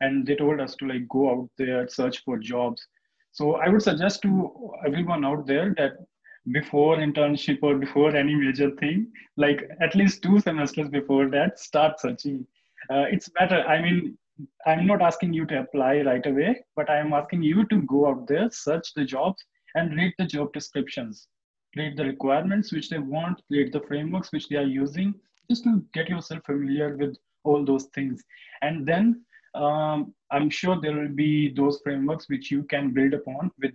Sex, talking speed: male, 185 wpm